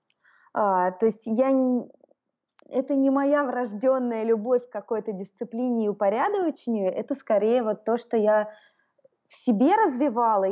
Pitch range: 200-245 Hz